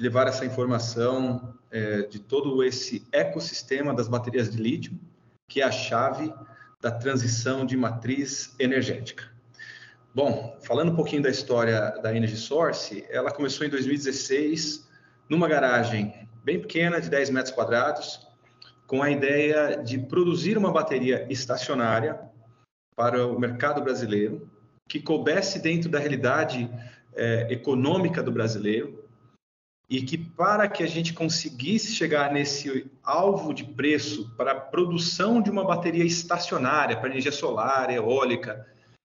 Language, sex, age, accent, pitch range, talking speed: Portuguese, male, 40-59, Brazilian, 125-160 Hz, 130 wpm